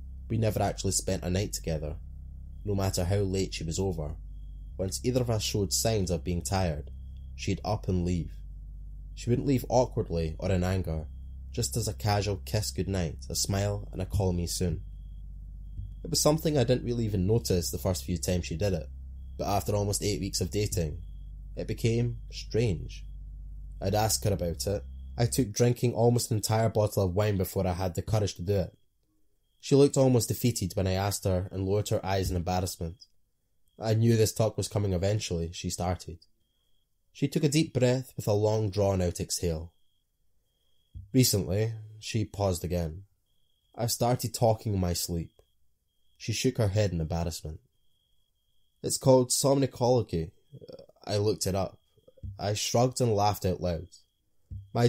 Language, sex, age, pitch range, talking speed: English, male, 20-39, 85-110 Hz, 175 wpm